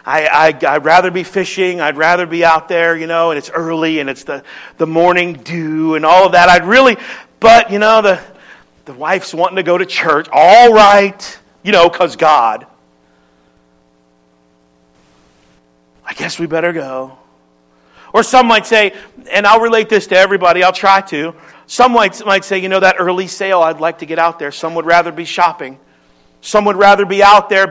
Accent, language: American, English